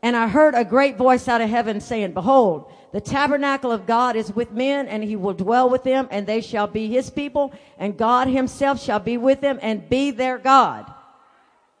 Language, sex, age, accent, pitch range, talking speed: English, female, 50-69, American, 240-290 Hz, 210 wpm